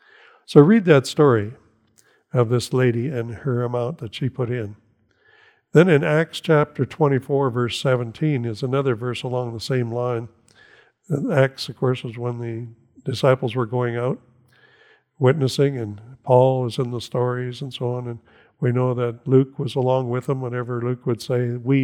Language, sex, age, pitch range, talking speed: English, male, 60-79, 120-150 Hz, 175 wpm